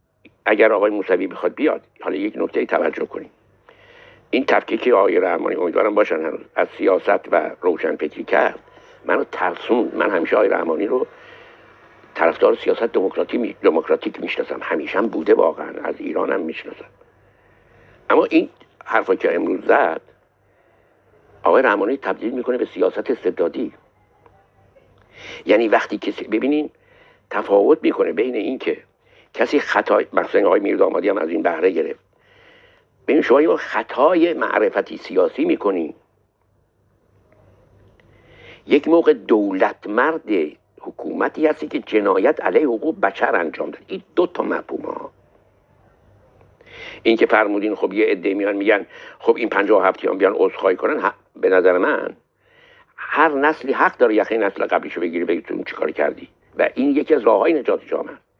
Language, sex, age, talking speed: Persian, male, 60-79, 135 wpm